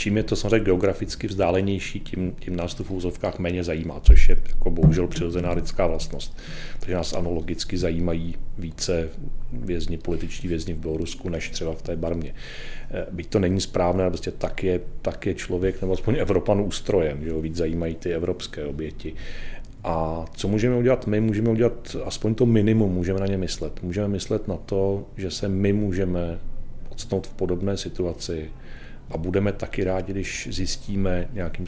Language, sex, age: Czech, male, 40-59